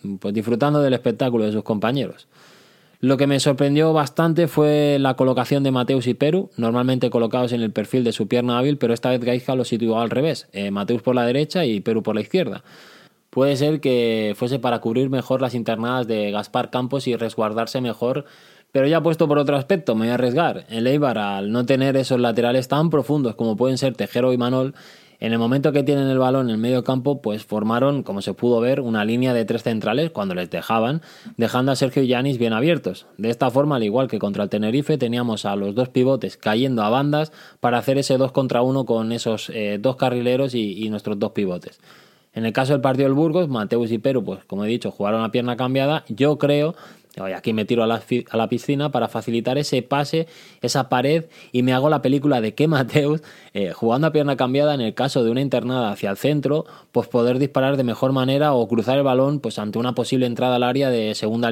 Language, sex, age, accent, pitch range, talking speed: Spanish, male, 20-39, Spanish, 115-140 Hz, 220 wpm